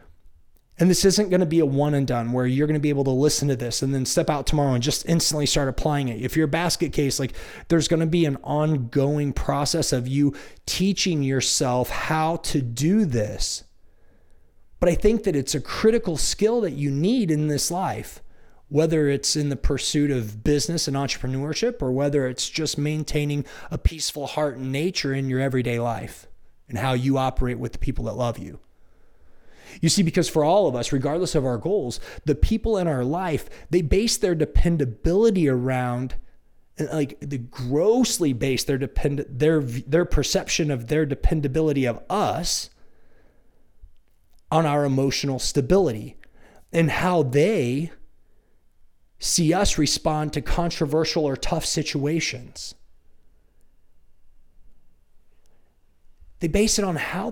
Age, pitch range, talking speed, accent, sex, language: 30-49, 125-160 Hz, 160 wpm, American, male, English